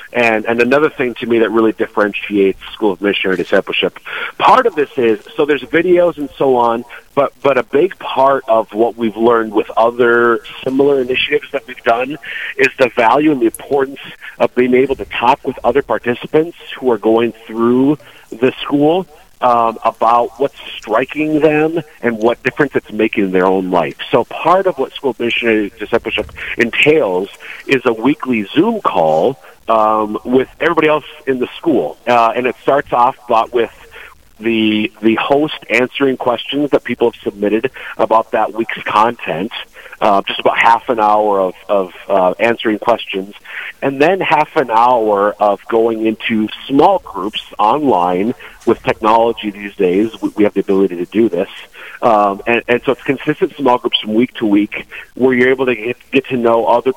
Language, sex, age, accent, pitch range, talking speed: English, male, 40-59, American, 110-135 Hz, 180 wpm